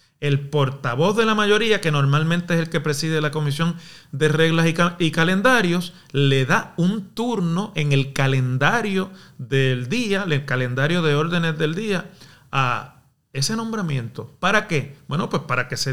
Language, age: Spanish, 40-59